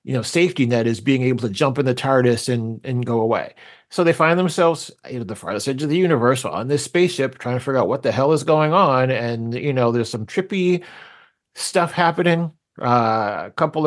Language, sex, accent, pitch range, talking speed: English, male, American, 120-155 Hz, 225 wpm